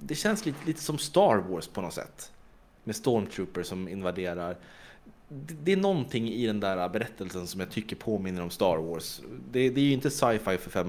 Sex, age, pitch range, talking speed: male, 30-49, 90-115 Hz, 205 wpm